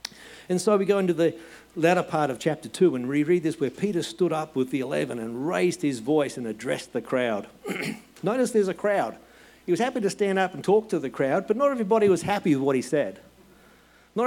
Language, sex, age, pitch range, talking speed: English, male, 50-69, 120-180 Hz, 225 wpm